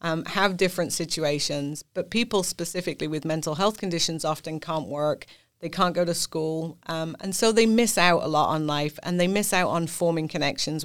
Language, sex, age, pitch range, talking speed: English, female, 30-49, 155-180 Hz, 200 wpm